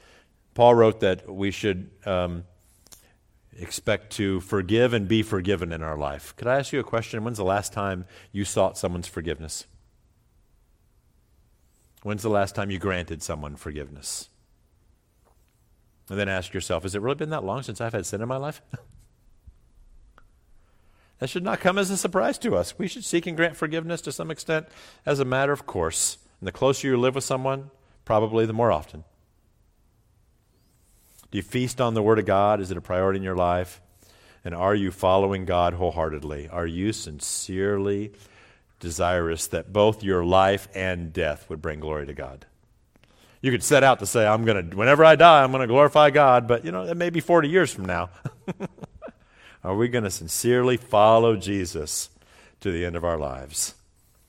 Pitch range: 90-120 Hz